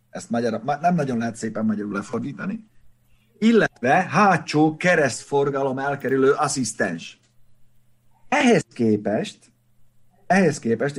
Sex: male